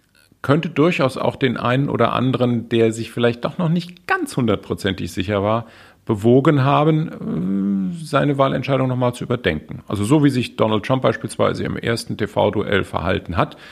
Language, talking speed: German, 155 wpm